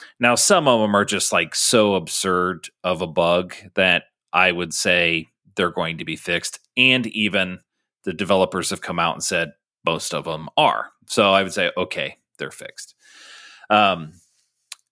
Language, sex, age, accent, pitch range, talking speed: English, male, 30-49, American, 95-125 Hz, 170 wpm